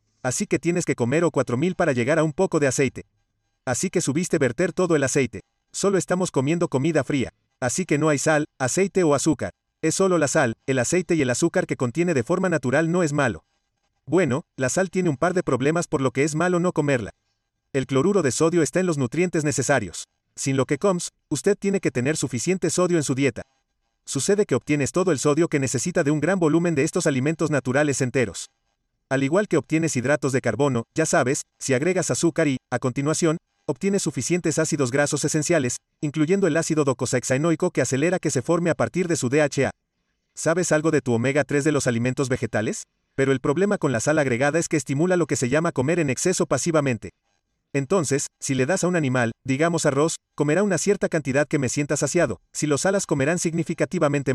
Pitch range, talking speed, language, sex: 130-170 Hz, 210 wpm, Spanish, male